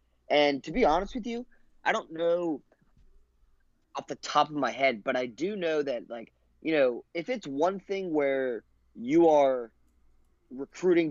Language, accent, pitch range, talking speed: English, American, 115-150 Hz, 165 wpm